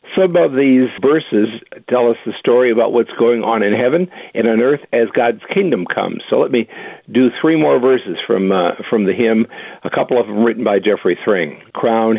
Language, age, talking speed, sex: English, 60-79, 205 wpm, male